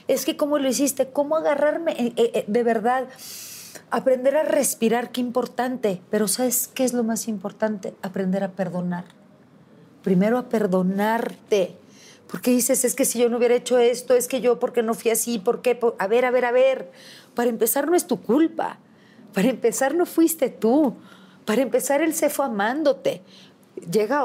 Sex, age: female, 40-59